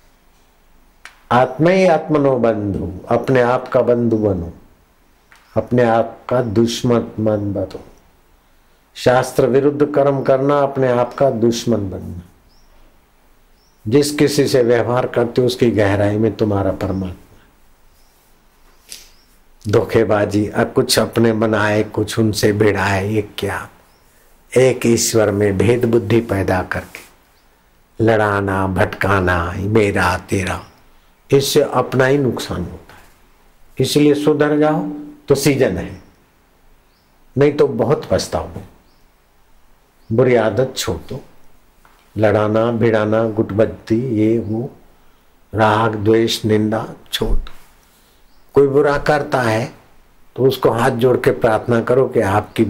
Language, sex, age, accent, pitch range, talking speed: Hindi, male, 60-79, native, 100-125 Hz, 105 wpm